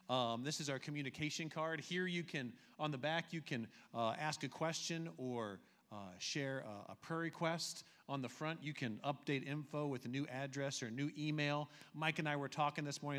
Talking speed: 215 wpm